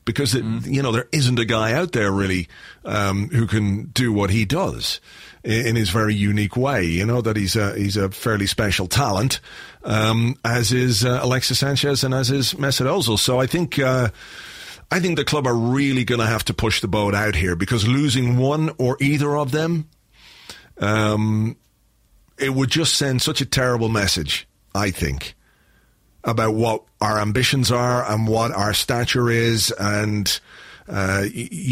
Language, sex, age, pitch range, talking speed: English, male, 40-59, 105-125 Hz, 170 wpm